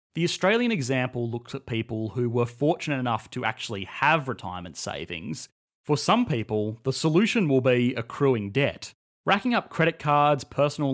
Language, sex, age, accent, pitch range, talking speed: English, male, 30-49, Australian, 120-155 Hz, 160 wpm